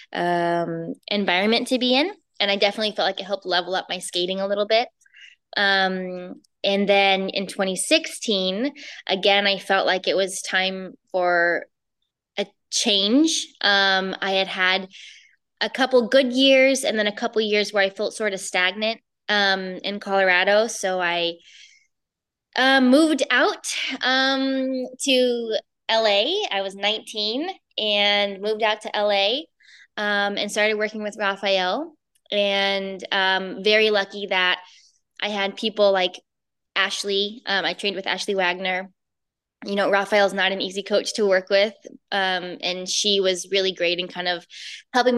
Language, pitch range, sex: English, 190-220 Hz, female